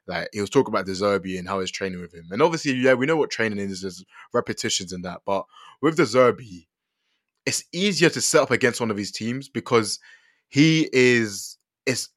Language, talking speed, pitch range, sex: English, 210 wpm, 95-125 Hz, male